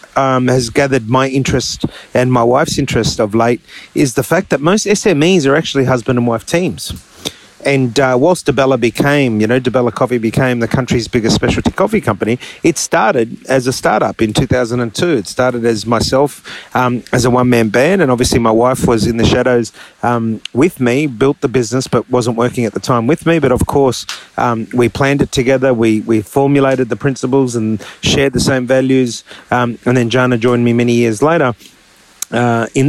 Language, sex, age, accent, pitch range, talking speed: English, male, 30-49, Australian, 120-145 Hz, 195 wpm